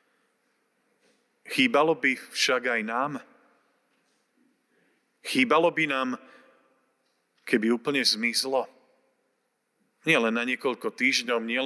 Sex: male